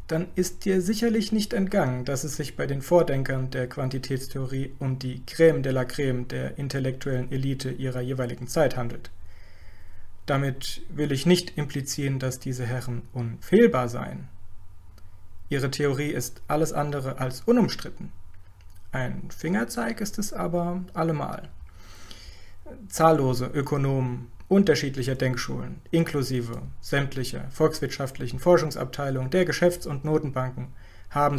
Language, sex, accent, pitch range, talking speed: German, male, German, 120-145 Hz, 120 wpm